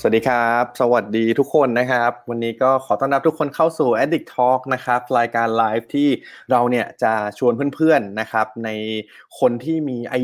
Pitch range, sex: 115-140 Hz, male